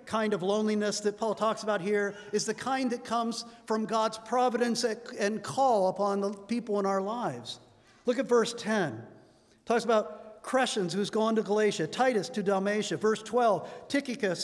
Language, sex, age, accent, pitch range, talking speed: English, male, 50-69, American, 195-250 Hz, 175 wpm